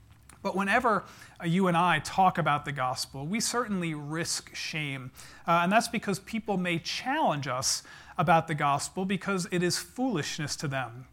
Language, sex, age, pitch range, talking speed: English, male, 40-59, 150-190 Hz, 160 wpm